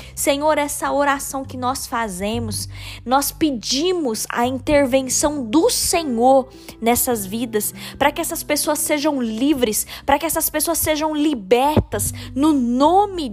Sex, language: female, Portuguese